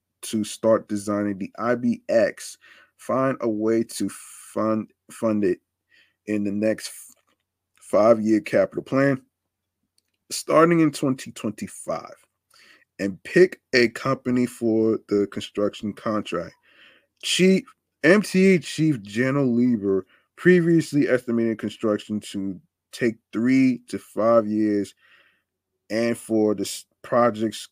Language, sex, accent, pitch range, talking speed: English, male, American, 100-125 Hz, 105 wpm